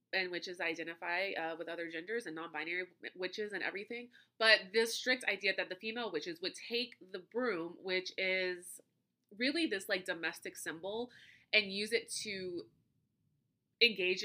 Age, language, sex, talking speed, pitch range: 20-39, English, female, 150 wpm, 180-240 Hz